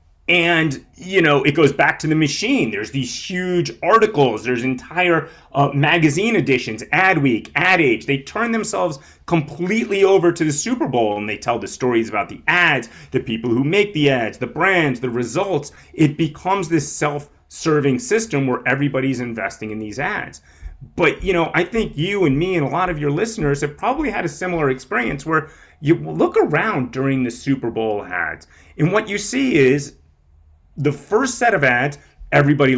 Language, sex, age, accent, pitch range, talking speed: English, male, 30-49, American, 120-175 Hz, 185 wpm